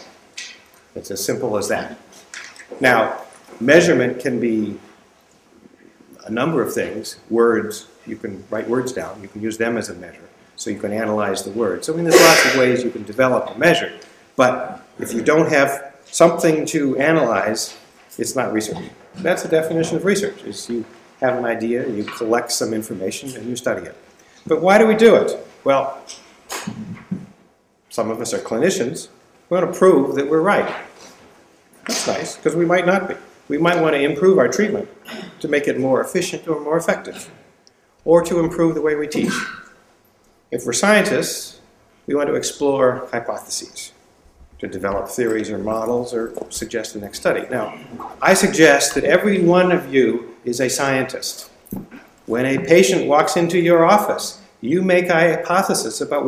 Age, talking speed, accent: 50-69, 175 wpm, American